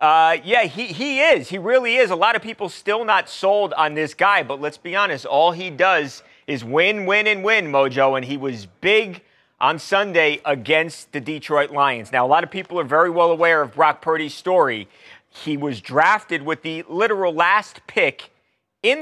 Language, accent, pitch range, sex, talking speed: English, American, 140-185 Hz, male, 200 wpm